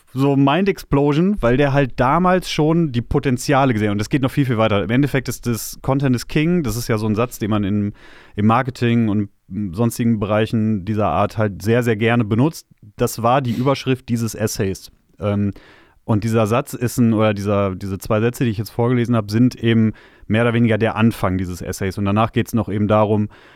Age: 30-49